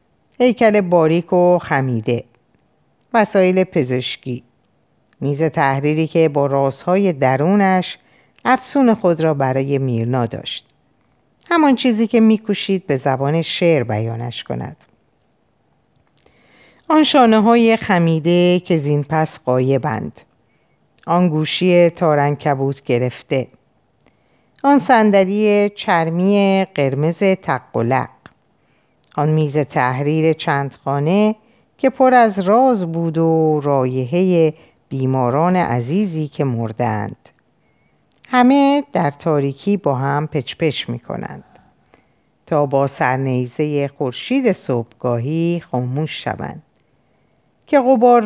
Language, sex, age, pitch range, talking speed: Persian, female, 50-69, 140-190 Hz, 100 wpm